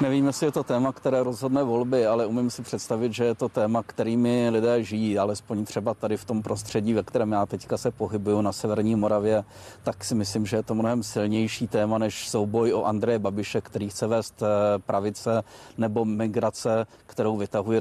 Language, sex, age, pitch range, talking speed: Czech, male, 40-59, 110-135 Hz, 190 wpm